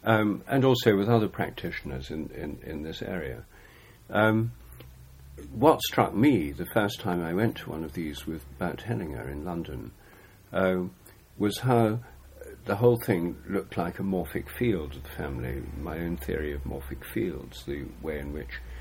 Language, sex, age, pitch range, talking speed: English, male, 50-69, 75-100 Hz, 165 wpm